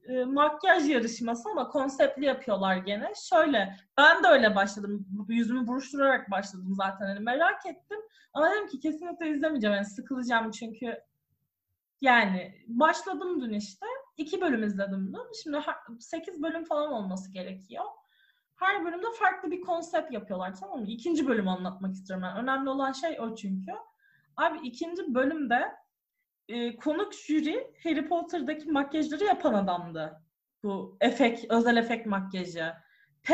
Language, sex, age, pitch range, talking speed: Turkish, female, 30-49, 205-325 Hz, 135 wpm